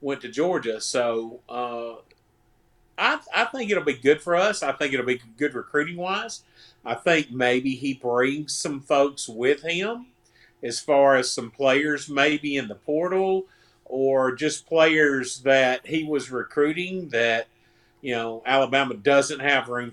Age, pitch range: 50-69, 120-150 Hz